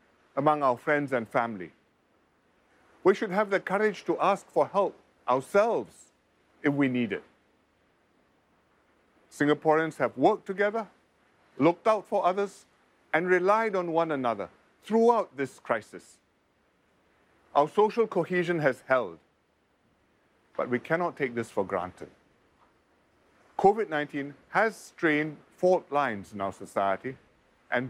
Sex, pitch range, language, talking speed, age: male, 130-195 Hz, English, 120 wpm, 50-69